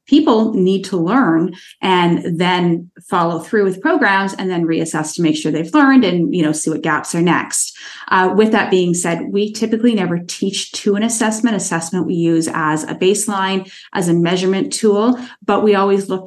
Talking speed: 190 wpm